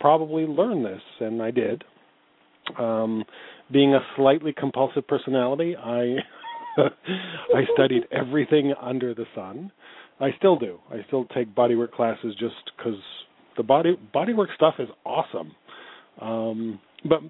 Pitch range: 115-140 Hz